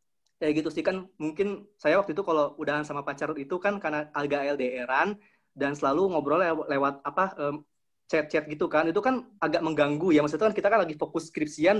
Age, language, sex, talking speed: 20-39, Indonesian, male, 195 wpm